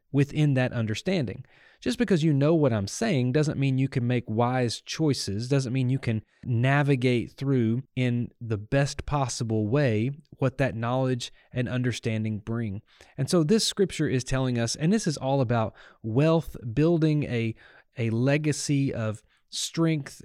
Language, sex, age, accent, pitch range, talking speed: English, male, 30-49, American, 120-150 Hz, 155 wpm